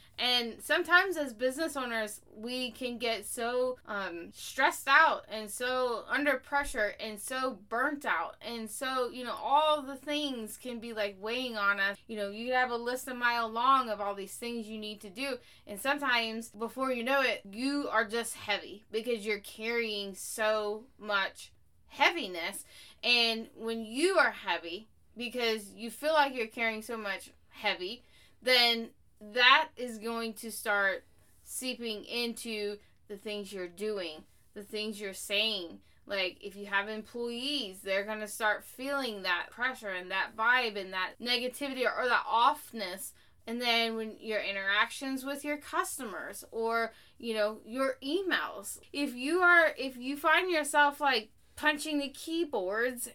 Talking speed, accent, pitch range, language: 160 wpm, American, 210-260 Hz, English